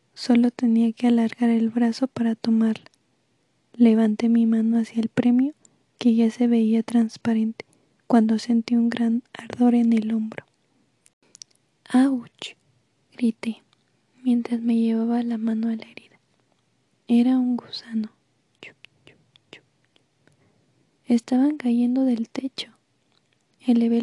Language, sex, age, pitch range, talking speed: Spanish, female, 20-39, 225-245 Hz, 110 wpm